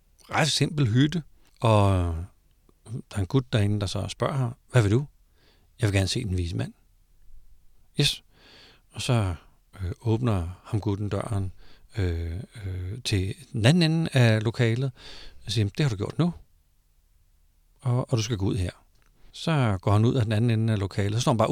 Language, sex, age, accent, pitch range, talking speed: Danish, male, 60-79, native, 90-130 Hz, 185 wpm